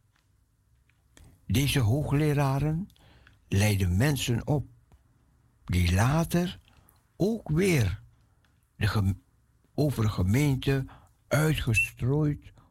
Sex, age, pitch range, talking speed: male, 60-79, 100-135 Hz, 70 wpm